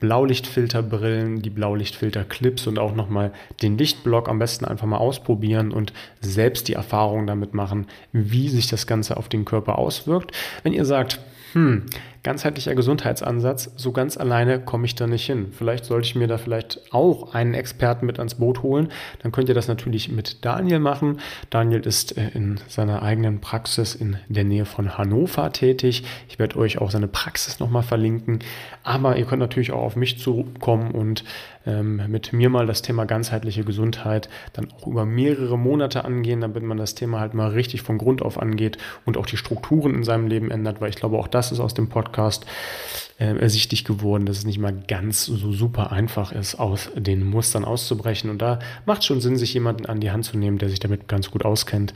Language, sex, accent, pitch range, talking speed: German, male, German, 110-125 Hz, 190 wpm